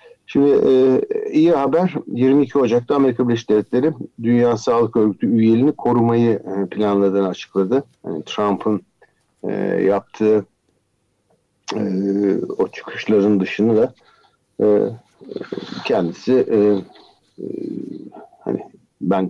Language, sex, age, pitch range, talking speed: Turkish, male, 60-79, 100-125 Hz, 100 wpm